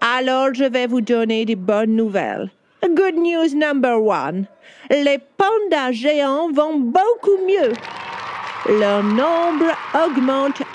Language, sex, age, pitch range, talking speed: French, female, 50-69, 250-350 Hz, 115 wpm